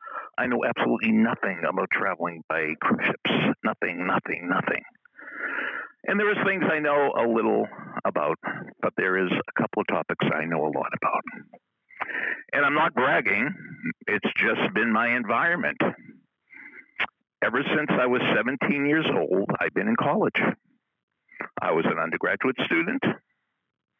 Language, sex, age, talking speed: English, male, 60-79, 145 wpm